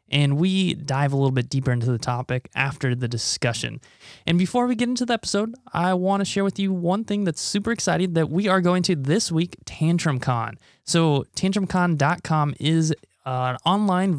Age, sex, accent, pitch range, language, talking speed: 20-39, male, American, 130-175 Hz, English, 185 wpm